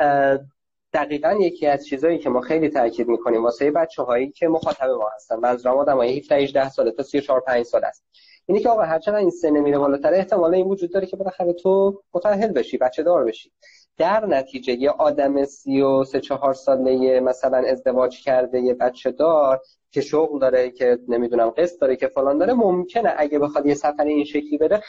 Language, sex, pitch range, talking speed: Persian, male, 130-175 Hz, 190 wpm